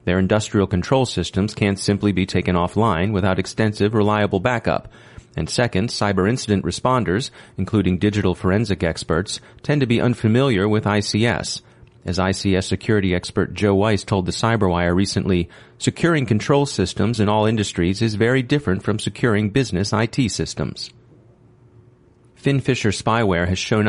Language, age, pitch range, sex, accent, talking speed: English, 30-49, 95-115 Hz, male, American, 140 wpm